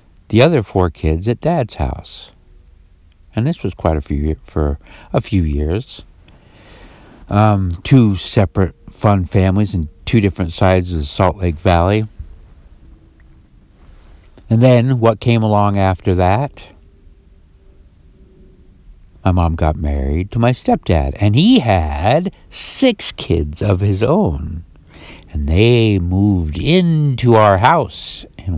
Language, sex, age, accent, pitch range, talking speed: English, male, 60-79, American, 80-115 Hz, 125 wpm